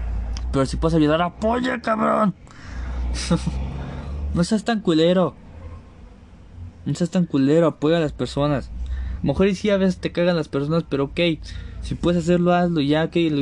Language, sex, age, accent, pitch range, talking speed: Spanish, male, 20-39, Mexican, 110-180 Hz, 175 wpm